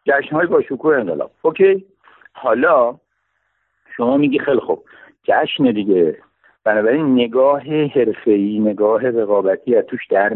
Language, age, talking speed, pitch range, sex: Persian, 60-79, 115 wpm, 135-195 Hz, male